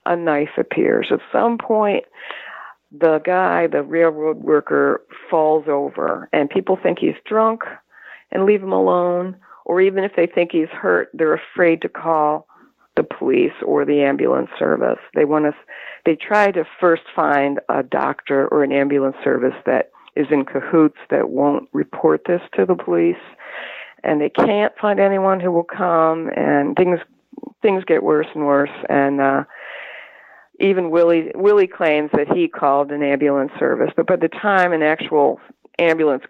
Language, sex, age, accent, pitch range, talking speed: English, female, 50-69, American, 150-195 Hz, 160 wpm